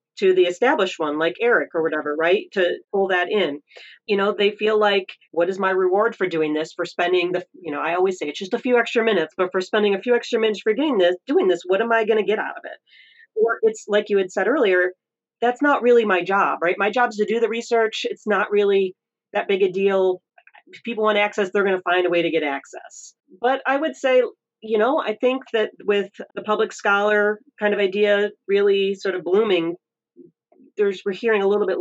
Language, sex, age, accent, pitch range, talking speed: English, female, 40-59, American, 175-215 Hz, 230 wpm